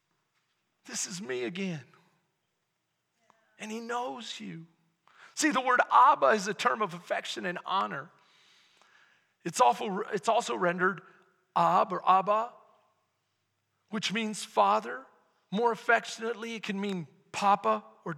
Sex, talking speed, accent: male, 120 wpm, American